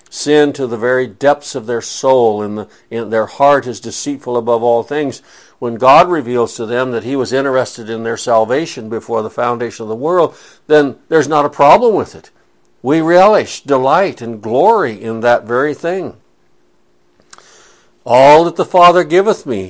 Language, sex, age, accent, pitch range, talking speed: English, male, 60-79, American, 115-145 Hz, 170 wpm